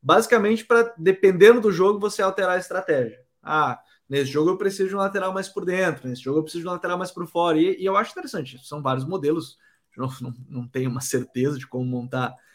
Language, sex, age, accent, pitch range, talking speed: Portuguese, male, 20-39, Brazilian, 135-190 Hz, 230 wpm